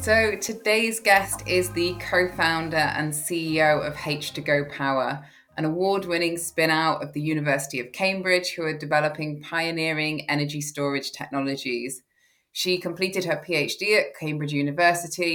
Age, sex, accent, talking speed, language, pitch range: 20-39, female, British, 140 wpm, English, 150-180 Hz